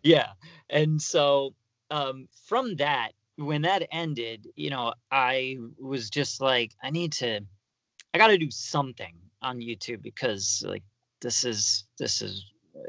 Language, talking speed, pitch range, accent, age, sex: English, 145 wpm, 115-145 Hz, American, 30-49, male